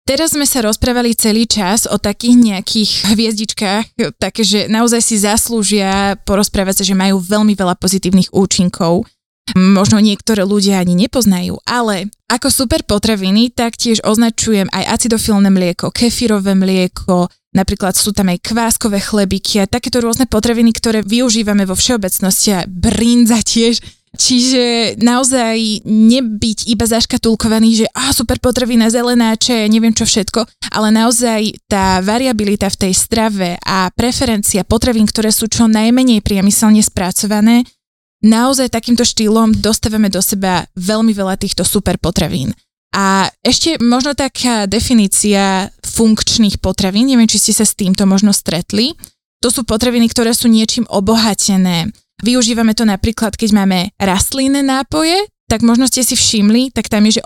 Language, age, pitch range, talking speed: Slovak, 20-39, 195-235 Hz, 135 wpm